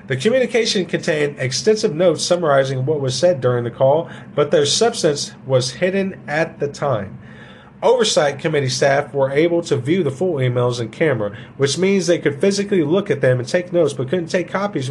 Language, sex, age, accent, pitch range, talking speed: English, male, 40-59, American, 120-175 Hz, 190 wpm